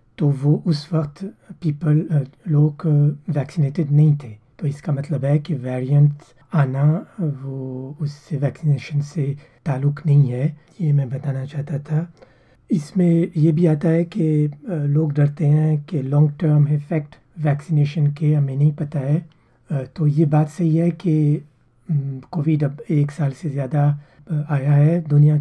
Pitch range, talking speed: 140-155 Hz, 145 wpm